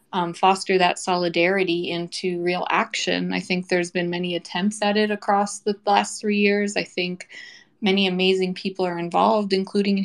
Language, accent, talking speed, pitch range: English, American, 175 wpm, 175-200 Hz